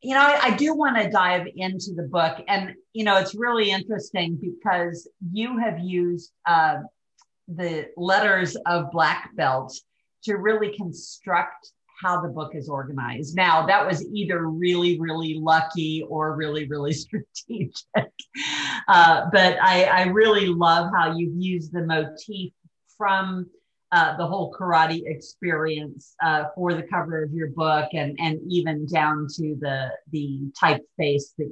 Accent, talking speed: American, 150 wpm